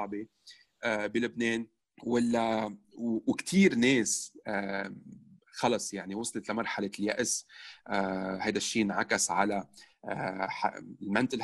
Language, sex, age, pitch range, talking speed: Arabic, male, 30-49, 105-140 Hz, 75 wpm